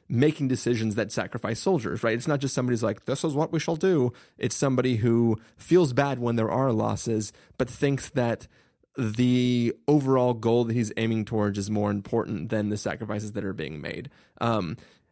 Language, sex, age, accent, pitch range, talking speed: English, male, 30-49, American, 115-150 Hz, 185 wpm